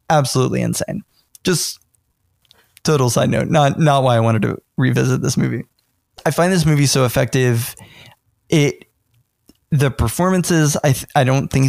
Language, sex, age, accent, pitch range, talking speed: English, male, 20-39, American, 120-140 Hz, 150 wpm